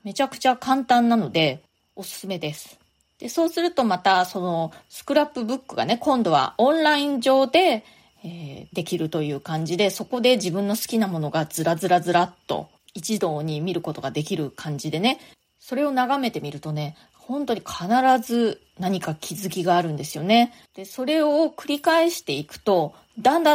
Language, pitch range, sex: Japanese, 165-255 Hz, female